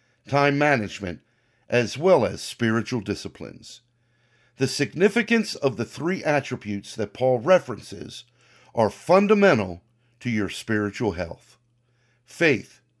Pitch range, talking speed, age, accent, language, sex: 115-145 Hz, 105 wpm, 50-69, American, English, male